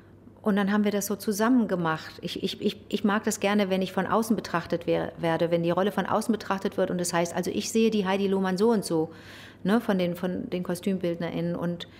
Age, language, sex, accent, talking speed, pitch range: 50-69, German, female, German, 240 wpm, 175-220 Hz